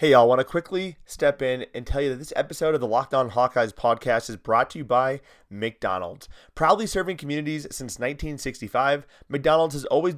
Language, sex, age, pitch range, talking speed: English, male, 30-49, 130-165 Hz, 195 wpm